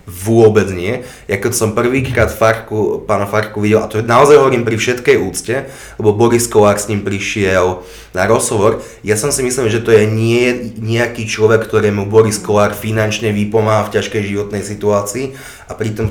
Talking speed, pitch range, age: 170 wpm, 100-115 Hz, 20-39